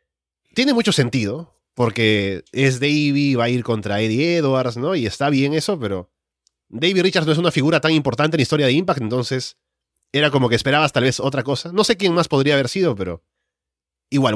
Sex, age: male, 30-49